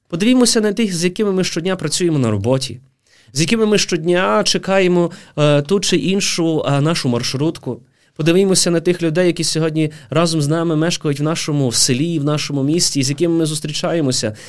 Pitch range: 120-175 Hz